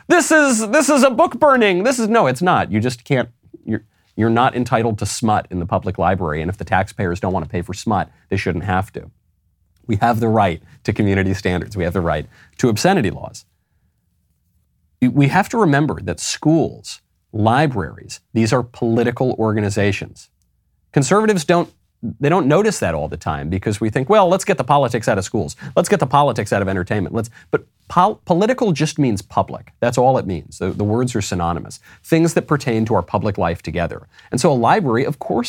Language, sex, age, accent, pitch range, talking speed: English, male, 30-49, American, 95-140 Hz, 205 wpm